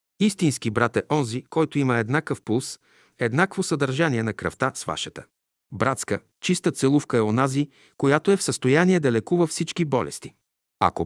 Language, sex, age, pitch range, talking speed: Bulgarian, male, 50-69, 120-165 Hz, 150 wpm